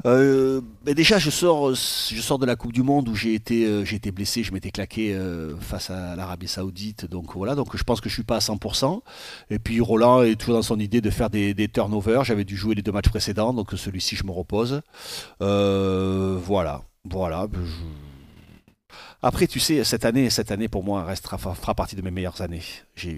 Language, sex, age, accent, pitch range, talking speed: French, male, 40-59, French, 95-125 Hz, 210 wpm